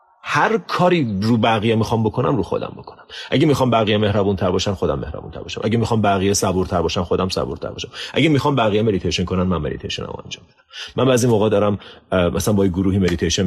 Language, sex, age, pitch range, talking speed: Persian, male, 30-49, 95-130 Hz, 200 wpm